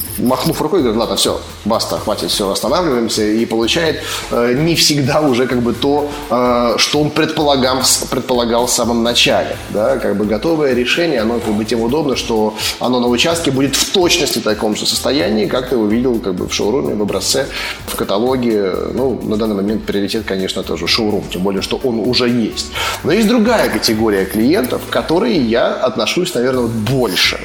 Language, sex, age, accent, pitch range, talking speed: Russian, male, 20-39, native, 110-140 Hz, 185 wpm